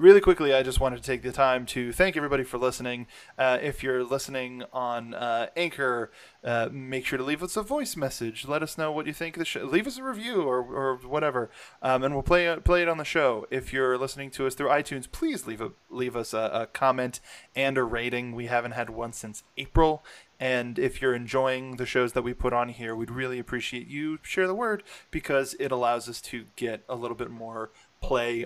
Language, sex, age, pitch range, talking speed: English, male, 20-39, 115-135 Hz, 230 wpm